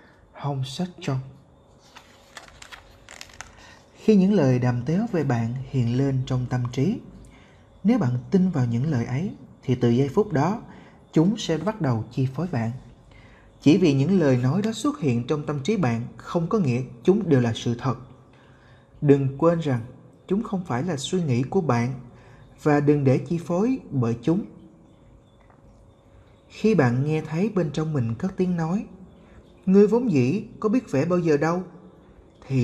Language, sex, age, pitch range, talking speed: Vietnamese, male, 20-39, 130-180 Hz, 165 wpm